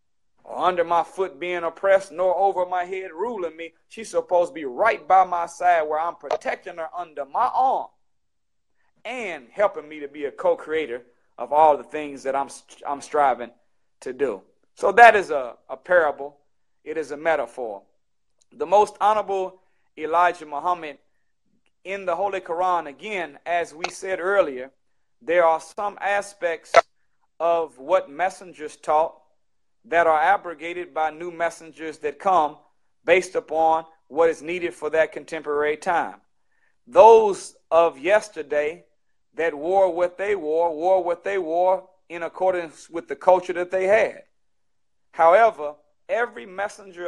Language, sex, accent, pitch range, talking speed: English, male, American, 160-195 Hz, 150 wpm